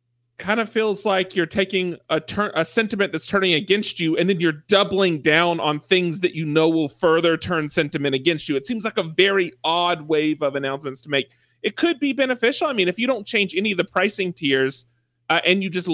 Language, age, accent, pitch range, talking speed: English, 30-49, American, 145-195 Hz, 225 wpm